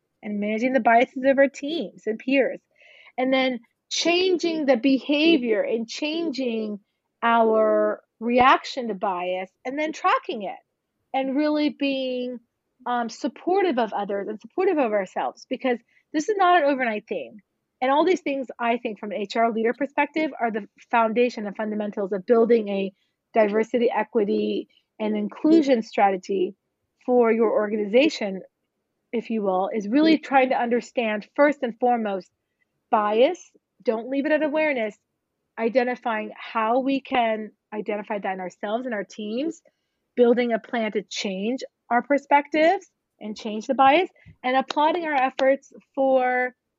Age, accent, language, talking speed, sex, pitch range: 30-49, American, English, 145 wpm, female, 220-275 Hz